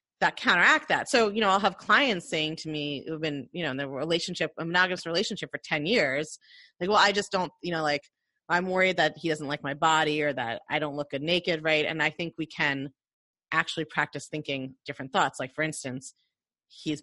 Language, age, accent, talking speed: English, 30-49, American, 220 wpm